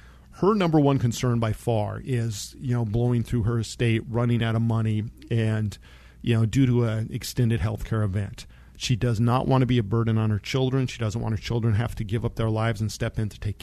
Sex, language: male, English